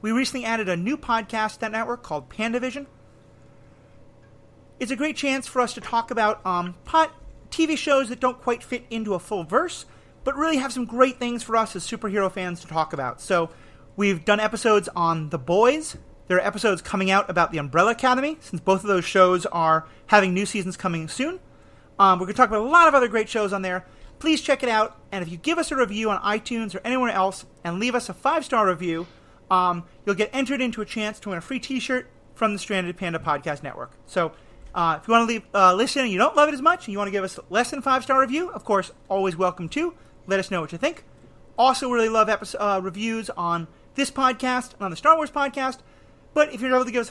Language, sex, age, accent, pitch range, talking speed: English, male, 30-49, American, 185-255 Hz, 235 wpm